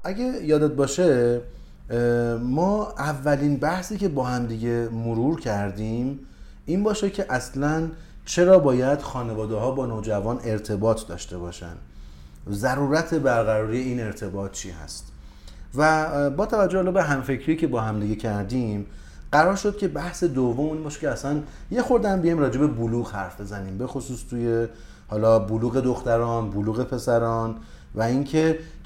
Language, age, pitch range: Persian, 30-49, 115-155 Hz